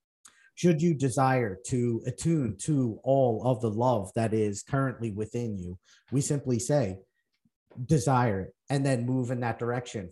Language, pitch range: English, 110-130 Hz